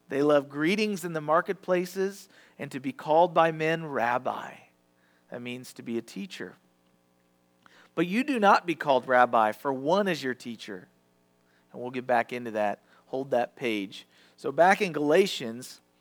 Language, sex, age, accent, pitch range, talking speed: English, male, 40-59, American, 100-165 Hz, 165 wpm